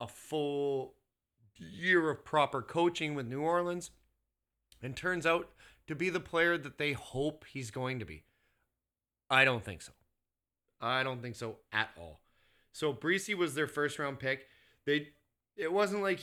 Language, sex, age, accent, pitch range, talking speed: English, male, 30-49, American, 115-160 Hz, 165 wpm